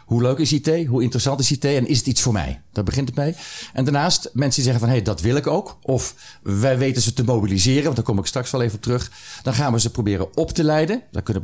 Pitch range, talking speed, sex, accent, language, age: 100-130 Hz, 280 wpm, male, Dutch, Dutch, 40-59